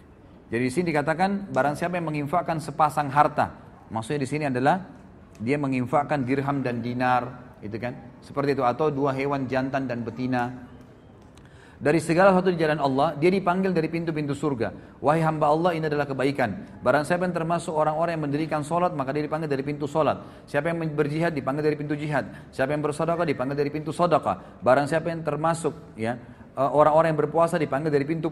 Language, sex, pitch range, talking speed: Malay, male, 125-170 Hz, 180 wpm